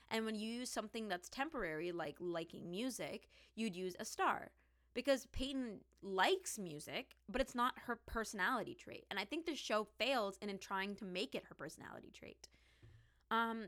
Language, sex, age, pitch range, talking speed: English, female, 20-39, 180-225 Hz, 175 wpm